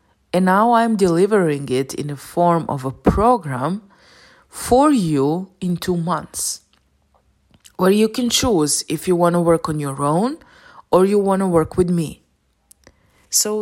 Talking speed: 160 wpm